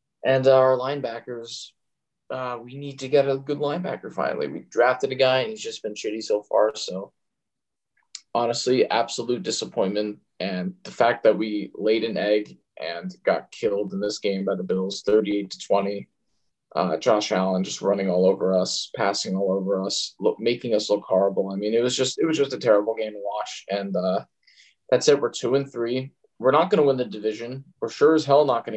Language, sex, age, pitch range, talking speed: English, male, 20-39, 110-180 Hz, 200 wpm